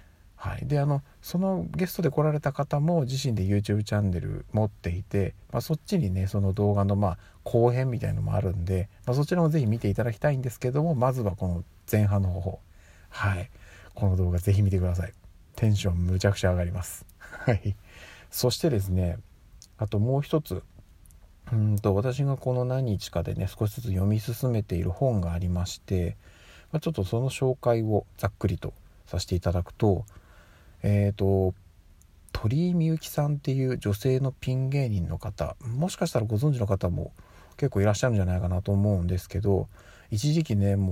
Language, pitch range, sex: Japanese, 90-125 Hz, male